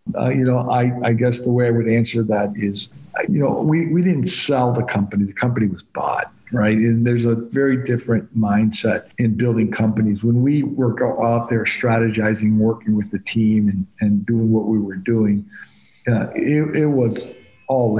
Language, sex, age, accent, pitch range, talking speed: English, male, 50-69, American, 110-125 Hz, 190 wpm